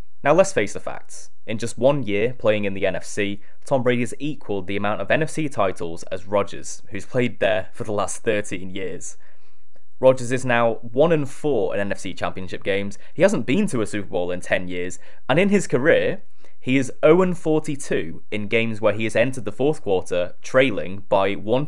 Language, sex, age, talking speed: English, male, 10-29, 190 wpm